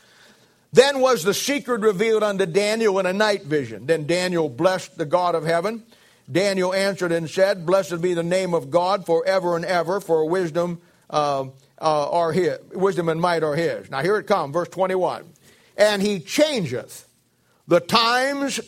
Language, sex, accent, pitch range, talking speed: English, male, American, 170-215 Hz, 155 wpm